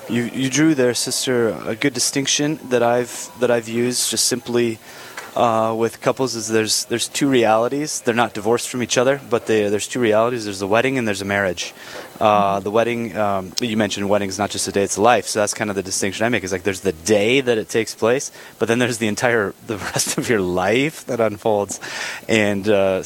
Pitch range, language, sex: 100-125 Hz, English, male